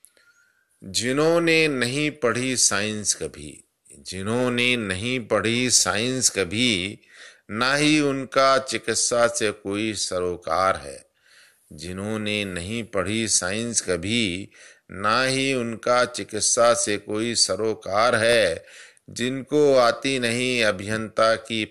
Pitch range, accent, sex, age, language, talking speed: 100-125 Hz, native, male, 50-69, Hindi, 100 wpm